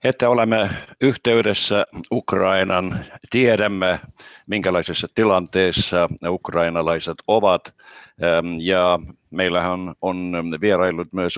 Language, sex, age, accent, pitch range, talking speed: Finnish, male, 50-69, native, 85-100 Hz, 80 wpm